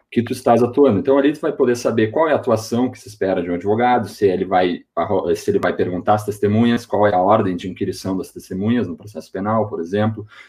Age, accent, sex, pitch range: 30-49, Brazilian, male, 95-125 Hz